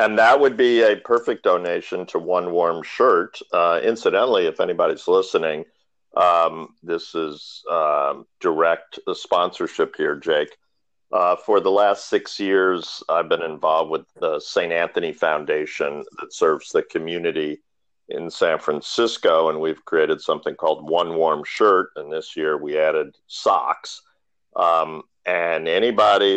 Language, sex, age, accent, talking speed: English, male, 50-69, American, 140 wpm